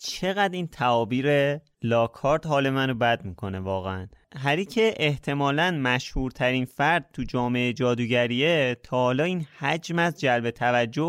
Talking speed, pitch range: 130 wpm, 115-155 Hz